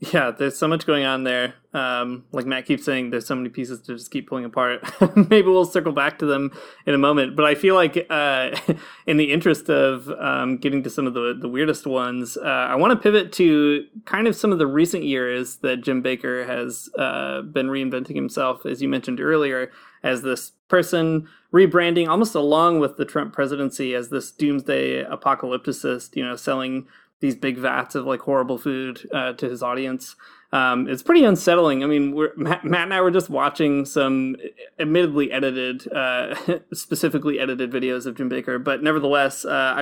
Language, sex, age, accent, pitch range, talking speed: English, male, 20-39, American, 130-160 Hz, 190 wpm